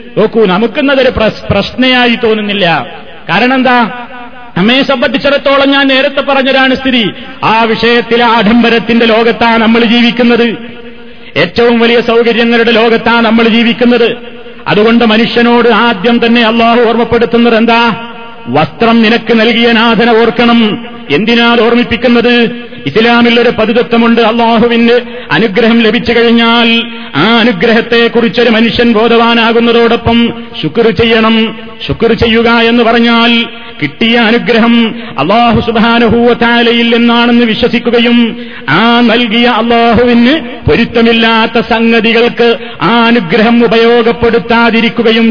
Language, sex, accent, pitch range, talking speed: Malayalam, male, native, 230-235 Hz, 90 wpm